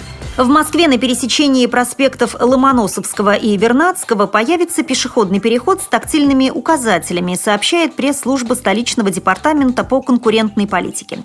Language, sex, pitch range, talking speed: Russian, female, 195-265 Hz, 110 wpm